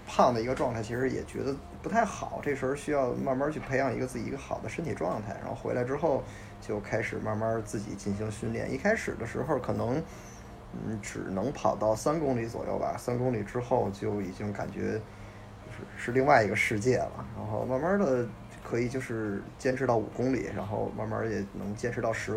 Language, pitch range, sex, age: Chinese, 105-130 Hz, male, 20-39